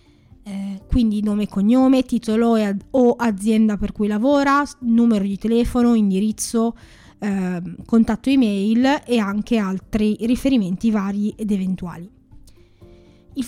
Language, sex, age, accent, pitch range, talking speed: Italian, female, 20-39, native, 195-235 Hz, 120 wpm